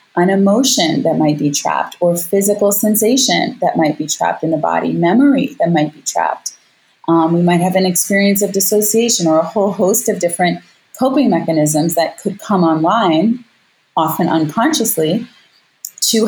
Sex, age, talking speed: female, 30-49, 160 wpm